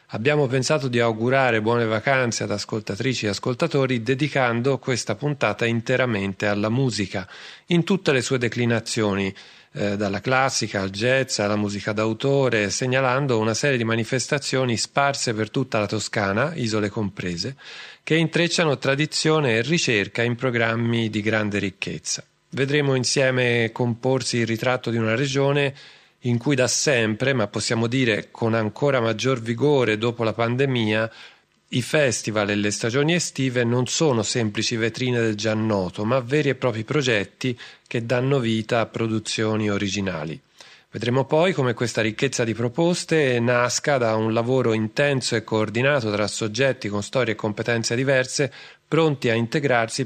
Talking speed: 145 wpm